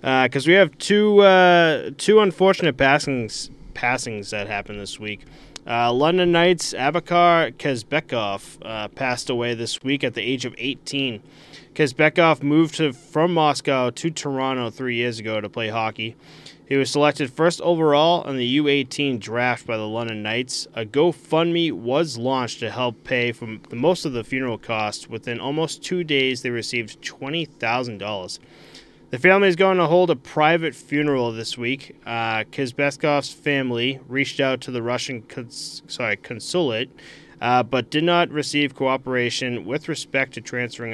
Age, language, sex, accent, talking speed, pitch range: 20-39, English, male, American, 155 wpm, 110-150 Hz